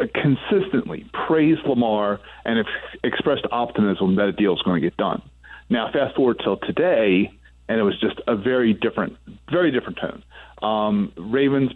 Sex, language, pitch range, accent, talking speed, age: male, English, 105-130 Hz, American, 160 wpm, 40-59